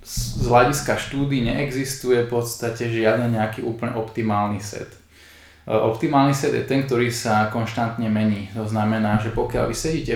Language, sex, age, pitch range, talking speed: Slovak, male, 20-39, 110-120 Hz, 150 wpm